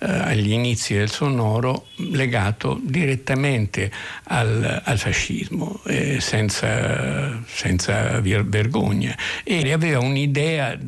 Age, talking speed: 60-79, 90 wpm